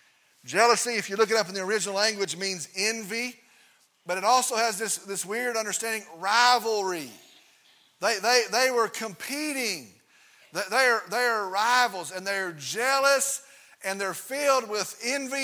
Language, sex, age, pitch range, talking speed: English, male, 40-59, 195-245 Hz, 145 wpm